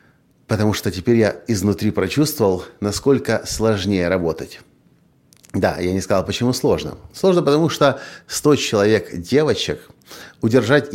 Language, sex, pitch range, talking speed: Russian, male, 95-135 Hz, 120 wpm